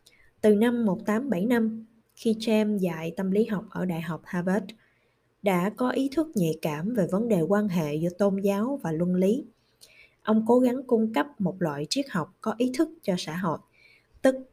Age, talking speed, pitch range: 20-39, 190 wpm, 170-230 Hz